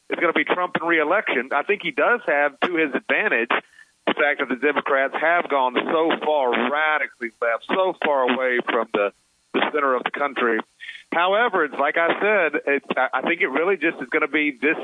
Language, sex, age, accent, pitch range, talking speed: English, male, 40-59, American, 125-155 Hz, 205 wpm